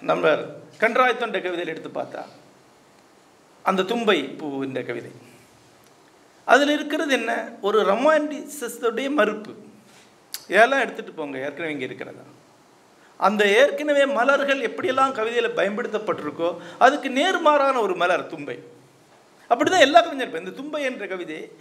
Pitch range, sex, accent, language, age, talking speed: 205-285 Hz, male, native, Tamil, 50-69, 115 wpm